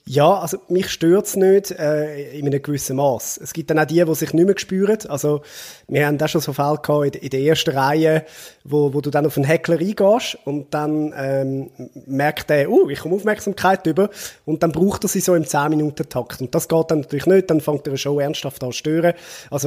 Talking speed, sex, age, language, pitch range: 230 wpm, male, 20-39, German, 145-170 Hz